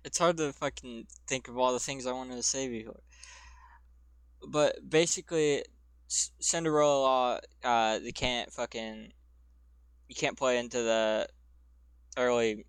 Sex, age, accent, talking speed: male, 20-39, American, 130 wpm